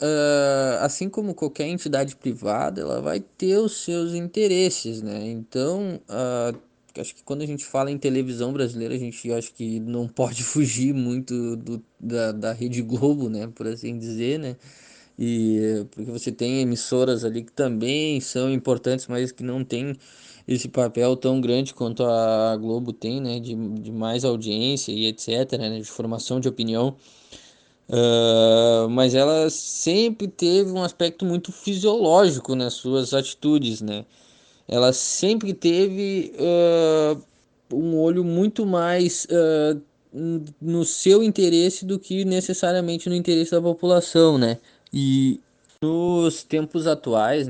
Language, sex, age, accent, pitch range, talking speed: Portuguese, male, 20-39, Brazilian, 115-155 Hz, 140 wpm